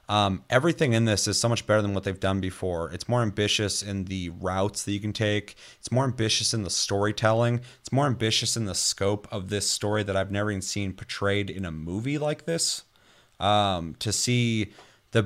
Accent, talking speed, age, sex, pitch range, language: American, 210 wpm, 30-49, male, 95-110 Hz, English